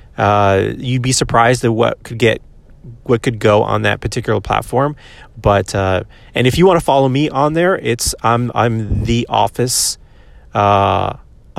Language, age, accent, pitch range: English, 30-49, American, 105-125 Hz